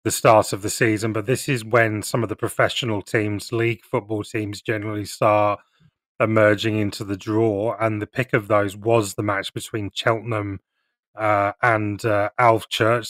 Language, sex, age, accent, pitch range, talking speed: English, male, 30-49, British, 105-120 Hz, 170 wpm